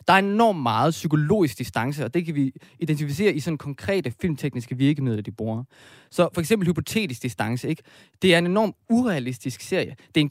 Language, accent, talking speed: Danish, native, 190 wpm